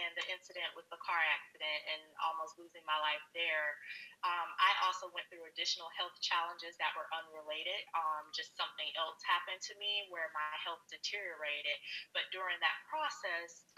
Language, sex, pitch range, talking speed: English, female, 165-195 Hz, 170 wpm